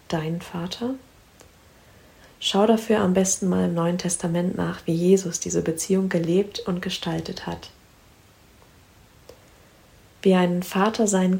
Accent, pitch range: German, 165-190 Hz